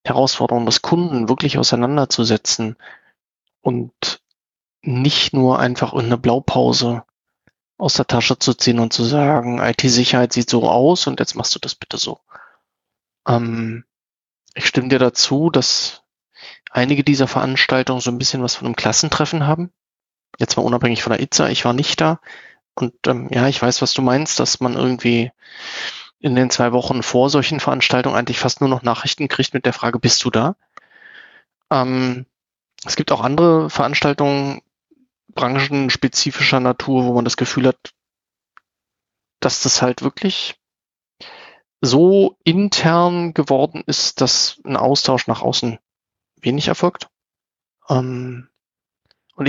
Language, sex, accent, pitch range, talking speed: German, male, German, 120-145 Hz, 145 wpm